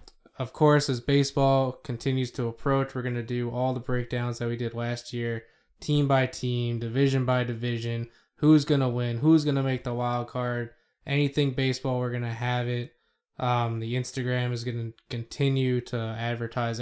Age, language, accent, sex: 10-29, English, American, male